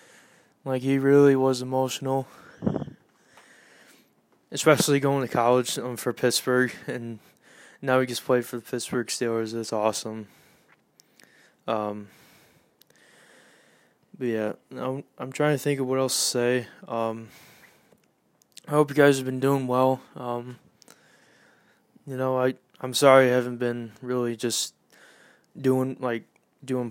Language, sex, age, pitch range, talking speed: English, male, 20-39, 115-130 Hz, 130 wpm